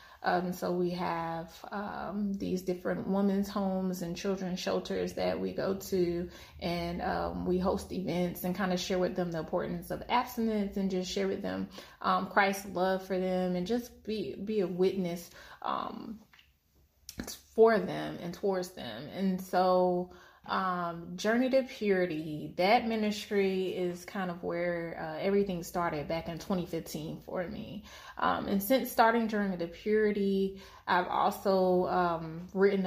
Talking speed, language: 155 wpm, English